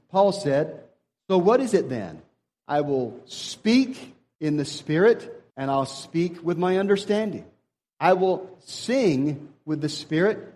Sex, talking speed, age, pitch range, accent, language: male, 140 wpm, 40-59, 125-165 Hz, American, English